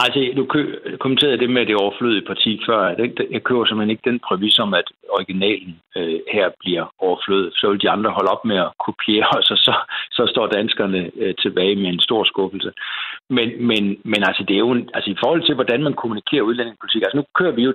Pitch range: 100-130 Hz